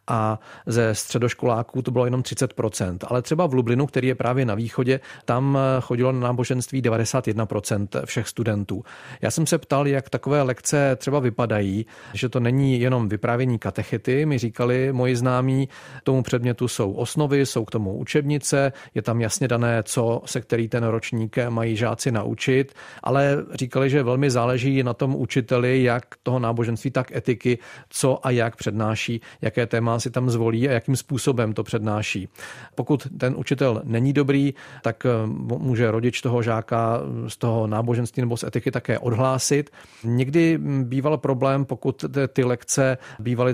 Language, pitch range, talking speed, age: Czech, 115-135 Hz, 155 wpm, 40-59